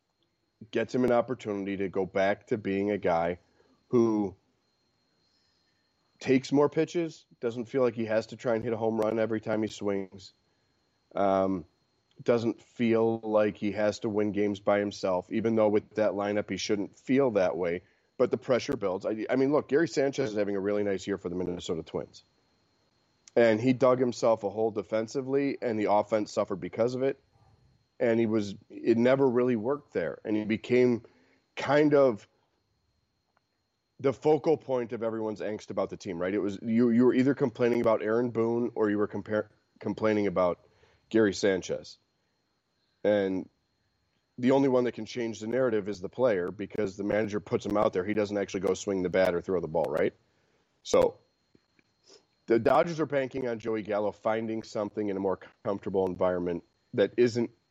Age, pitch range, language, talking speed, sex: 30-49, 100-125 Hz, English, 180 wpm, male